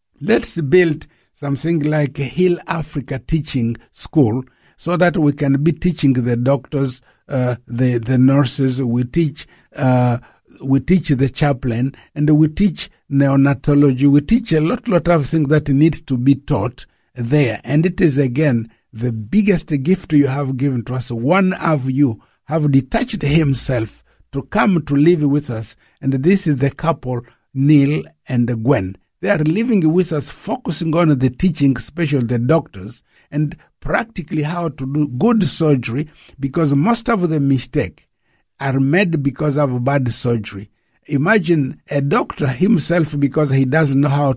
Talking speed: 155 wpm